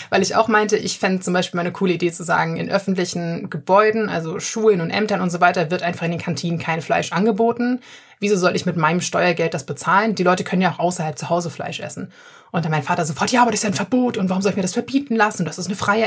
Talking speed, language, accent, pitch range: 275 wpm, German, German, 175-205 Hz